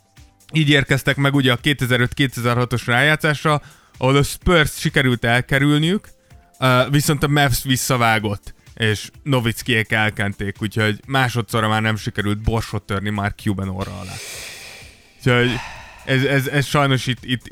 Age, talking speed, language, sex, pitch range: 20-39, 125 wpm, Hungarian, male, 110-140 Hz